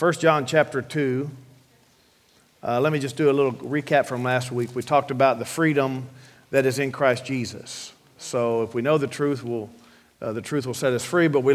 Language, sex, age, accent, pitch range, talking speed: English, male, 50-69, American, 135-175 Hz, 205 wpm